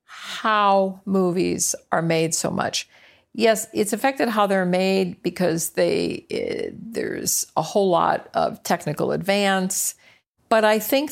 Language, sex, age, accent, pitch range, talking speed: English, female, 50-69, American, 170-215 Hz, 135 wpm